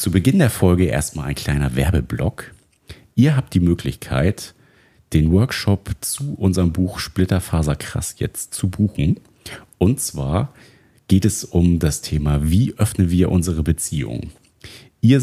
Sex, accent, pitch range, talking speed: male, German, 80-100 Hz, 135 wpm